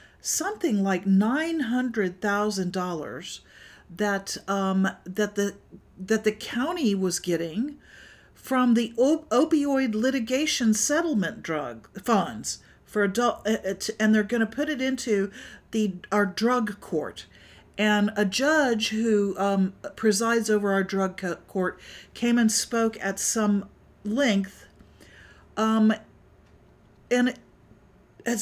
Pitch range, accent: 185-225 Hz, American